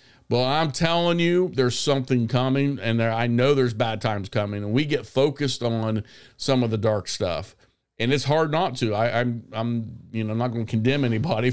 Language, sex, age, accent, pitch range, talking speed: English, male, 50-69, American, 115-140 Hz, 210 wpm